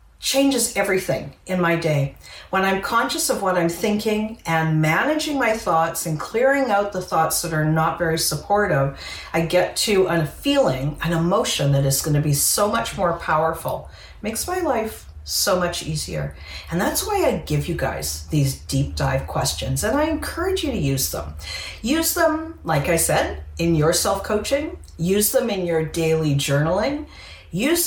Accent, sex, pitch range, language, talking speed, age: American, female, 140-225 Hz, English, 170 wpm, 40-59